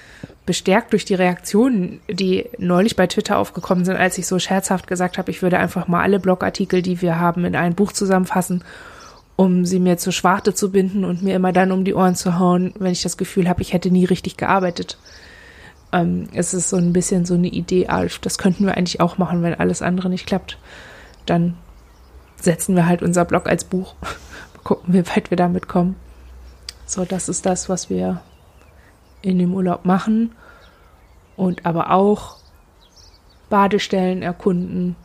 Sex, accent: female, German